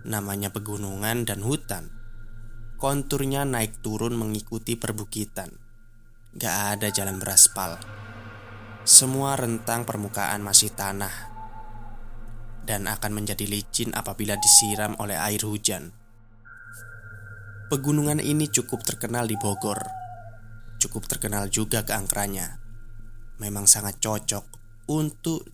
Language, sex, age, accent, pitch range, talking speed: Indonesian, male, 20-39, native, 105-115 Hz, 95 wpm